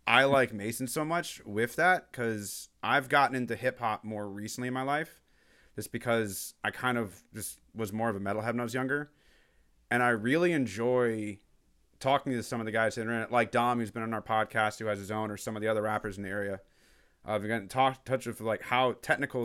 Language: English